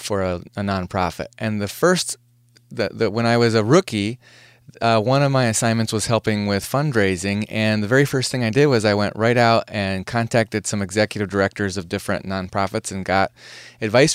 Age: 20-39